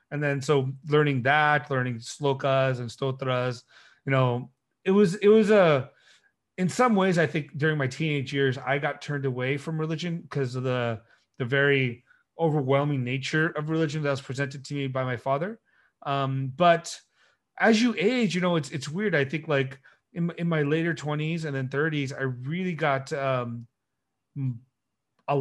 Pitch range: 130-155 Hz